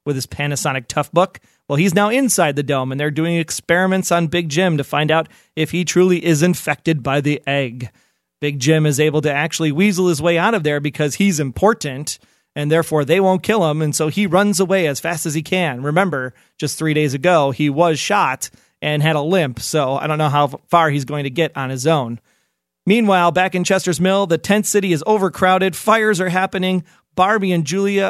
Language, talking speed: English, 215 wpm